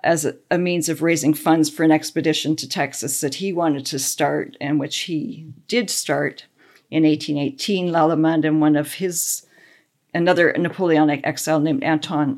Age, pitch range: 50-69, 150-175 Hz